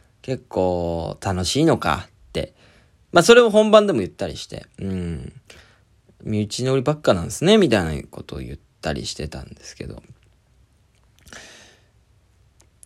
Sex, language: male, Japanese